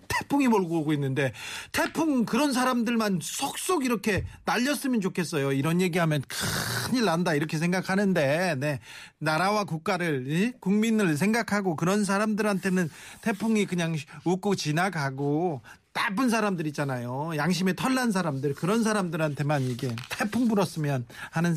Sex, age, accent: male, 40-59, native